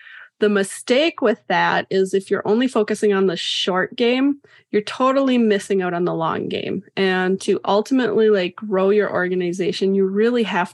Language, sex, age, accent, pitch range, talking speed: English, female, 20-39, American, 190-220 Hz, 175 wpm